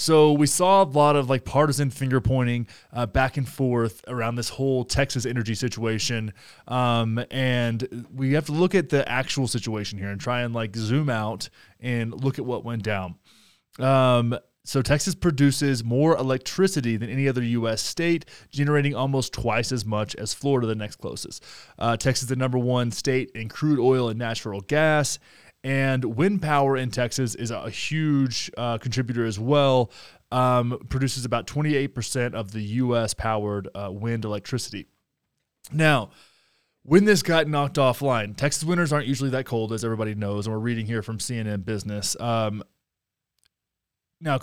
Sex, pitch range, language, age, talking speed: male, 115-140 Hz, English, 20-39, 165 wpm